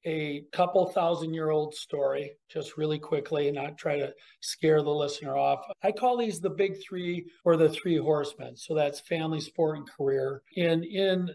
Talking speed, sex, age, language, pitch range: 175 wpm, male, 40-59, English, 150-190 Hz